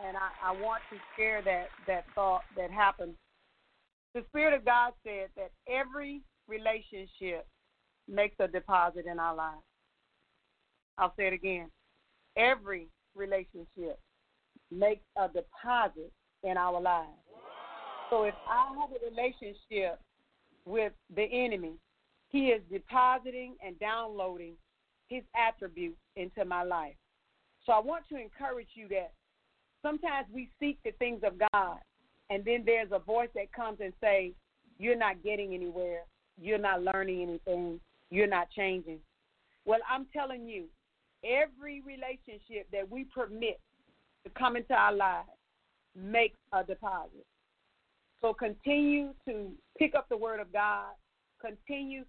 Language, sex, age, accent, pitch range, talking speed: English, female, 40-59, American, 190-245 Hz, 135 wpm